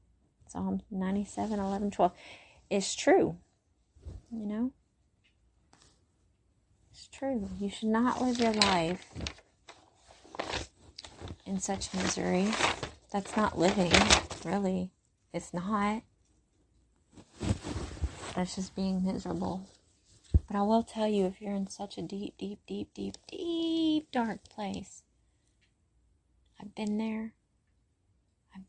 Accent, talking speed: American, 105 wpm